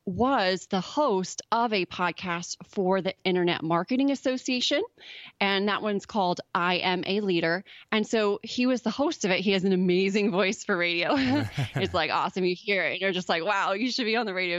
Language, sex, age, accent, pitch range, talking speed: English, female, 20-39, American, 175-230 Hz, 210 wpm